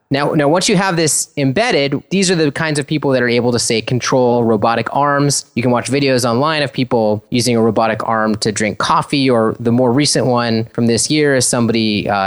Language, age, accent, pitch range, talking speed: English, 20-39, American, 105-140 Hz, 225 wpm